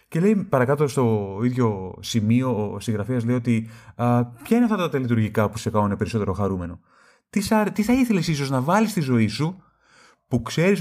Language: Greek